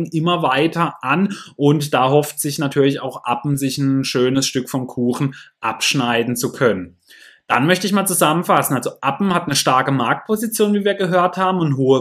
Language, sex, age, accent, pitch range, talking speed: German, male, 20-39, German, 135-185 Hz, 180 wpm